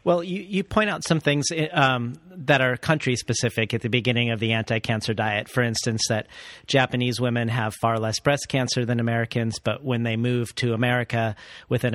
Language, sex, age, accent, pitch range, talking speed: English, male, 40-59, American, 115-135 Hz, 185 wpm